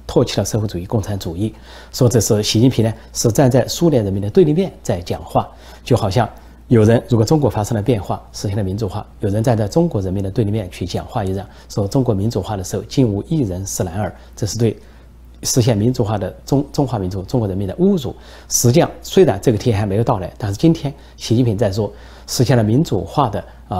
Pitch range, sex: 95-125 Hz, male